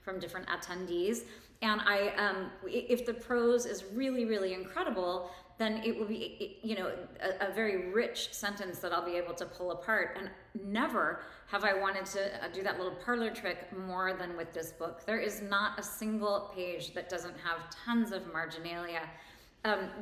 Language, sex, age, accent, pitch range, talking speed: English, female, 30-49, American, 180-225 Hz, 180 wpm